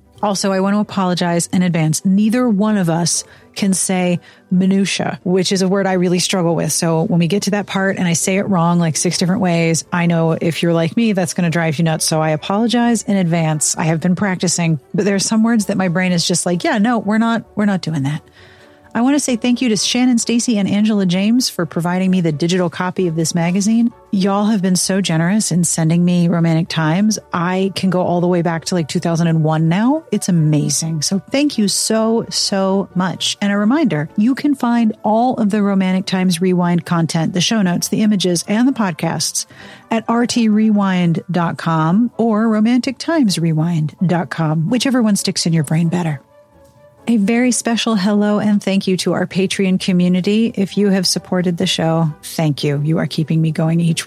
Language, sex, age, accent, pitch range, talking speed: English, female, 40-59, American, 170-210 Hz, 205 wpm